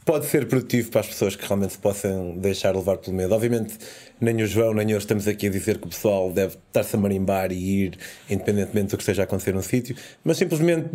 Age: 20-39